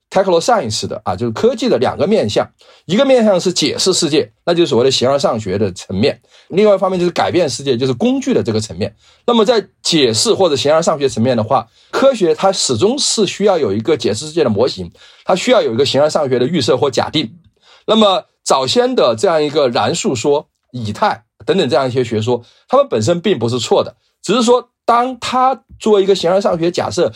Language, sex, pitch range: Chinese, male, 135-220 Hz